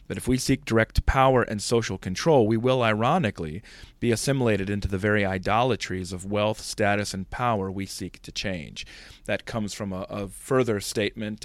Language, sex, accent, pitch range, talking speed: English, male, American, 100-125 Hz, 180 wpm